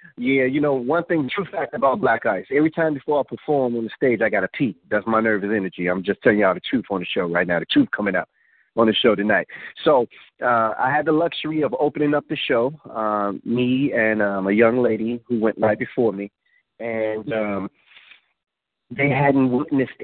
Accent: American